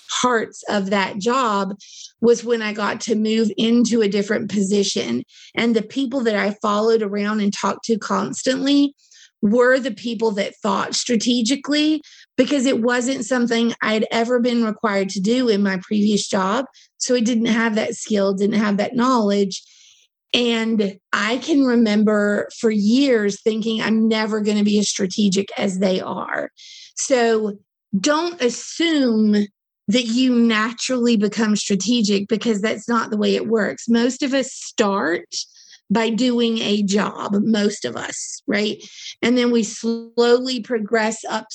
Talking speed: 150 wpm